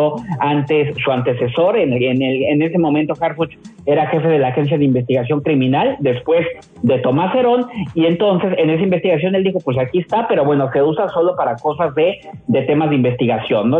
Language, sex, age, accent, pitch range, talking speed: Spanish, male, 50-69, Mexican, 145-190 Hz, 200 wpm